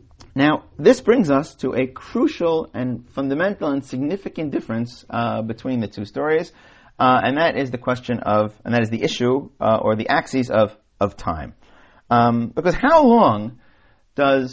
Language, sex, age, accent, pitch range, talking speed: English, male, 40-59, American, 110-145 Hz, 170 wpm